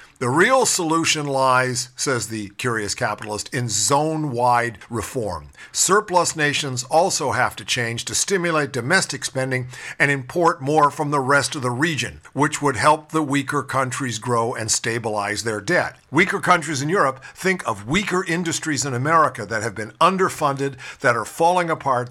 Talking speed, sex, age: 160 wpm, male, 50-69